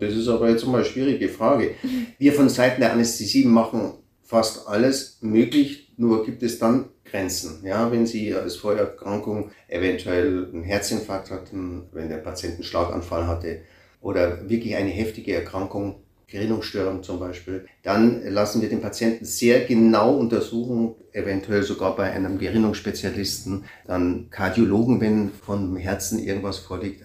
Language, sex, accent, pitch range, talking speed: German, male, German, 95-115 Hz, 145 wpm